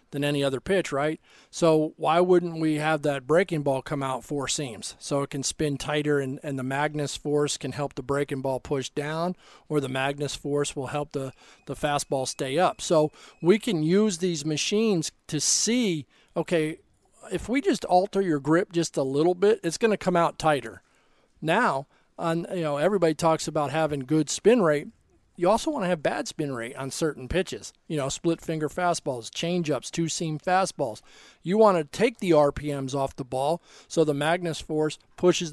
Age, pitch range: 40-59, 145-175 Hz